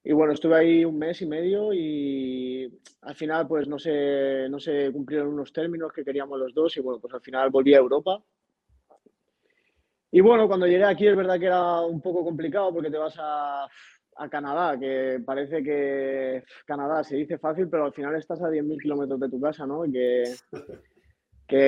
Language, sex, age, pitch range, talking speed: Spanish, male, 20-39, 135-160 Hz, 195 wpm